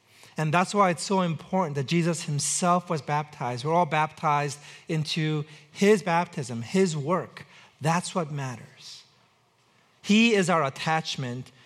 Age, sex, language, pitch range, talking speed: 40-59, male, English, 145-180 Hz, 135 wpm